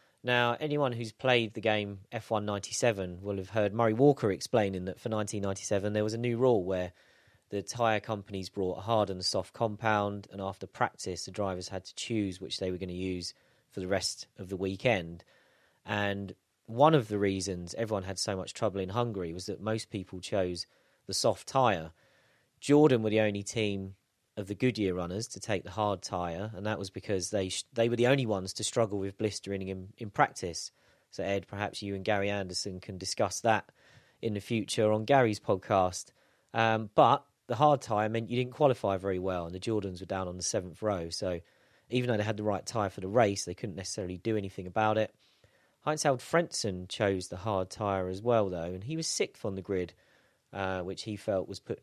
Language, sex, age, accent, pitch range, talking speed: English, male, 30-49, British, 95-115 Hz, 210 wpm